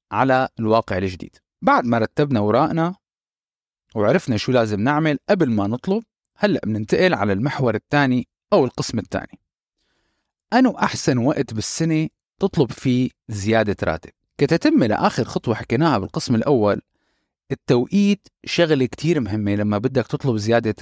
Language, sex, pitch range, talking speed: Arabic, male, 115-185 Hz, 125 wpm